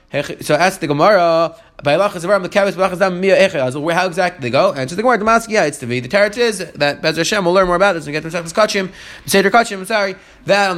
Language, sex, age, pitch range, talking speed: English, male, 20-39, 165-215 Hz, 205 wpm